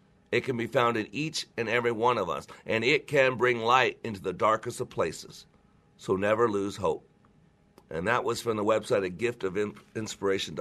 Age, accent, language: 50-69, American, English